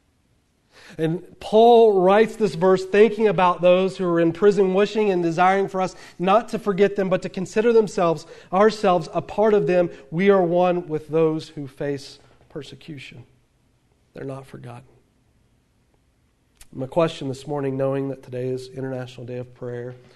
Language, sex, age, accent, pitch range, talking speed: English, male, 40-59, American, 125-150 Hz, 160 wpm